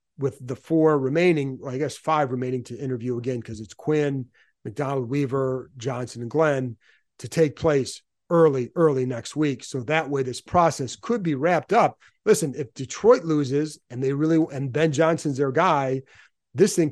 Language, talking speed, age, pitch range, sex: English, 175 wpm, 40-59, 130-155 Hz, male